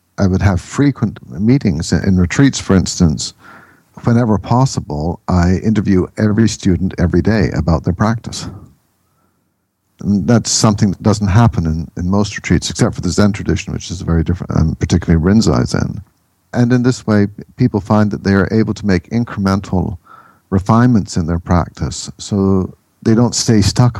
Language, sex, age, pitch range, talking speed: English, male, 60-79, 90-110 Hz, 160 wpm